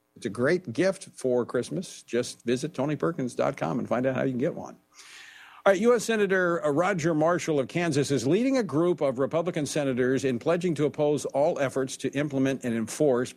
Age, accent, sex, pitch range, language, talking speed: 50-69, American, male, 125-155 Hz, English, 190 wpm